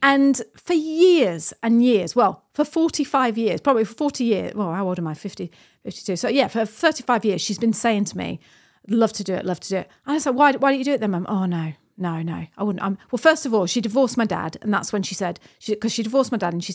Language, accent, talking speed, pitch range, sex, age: English, British, 270 wpm, 190-260 Hz, female, 40-59